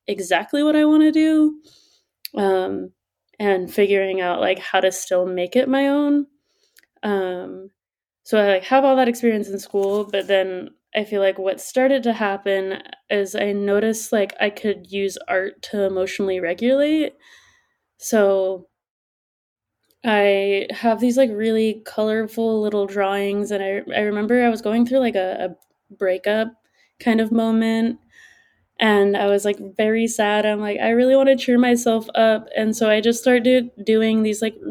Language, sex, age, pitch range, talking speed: English, female, 20-39, 200-235 Hz, 165 wpm